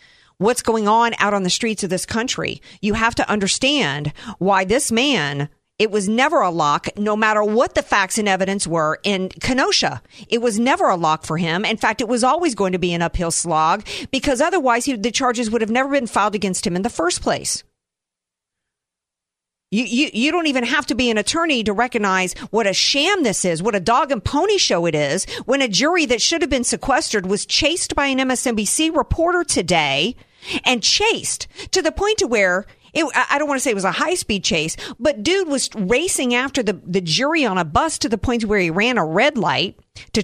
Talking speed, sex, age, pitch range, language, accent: 220 wpm, female, 50-69, 190-265 Hz, English, American